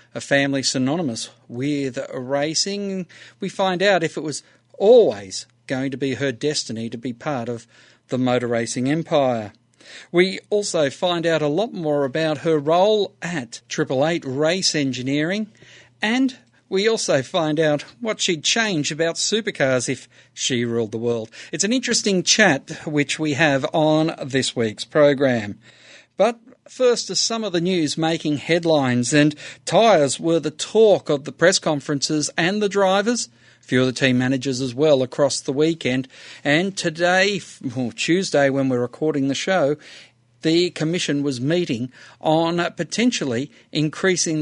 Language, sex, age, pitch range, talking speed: English, male, 50-69, 130-175 Hz, 155 wpm